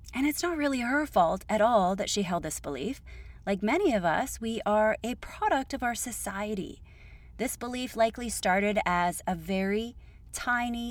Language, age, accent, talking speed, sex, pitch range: English, 30-49, American, 175 wpm, female, 180-245 Hz